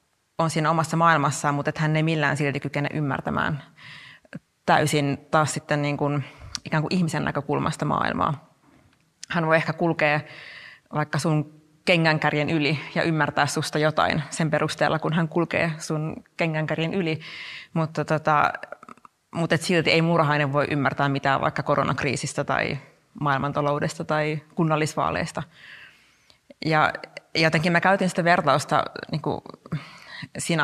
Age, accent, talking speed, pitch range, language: 30-49, native, 130 wpm, 150-165 Hz, Finnish